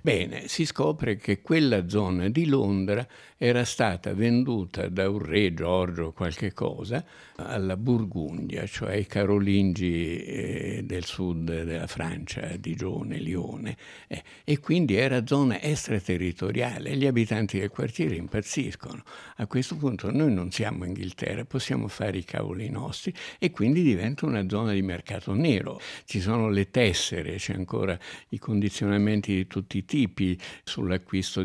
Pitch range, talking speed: 95-130 Hz, 140 wpm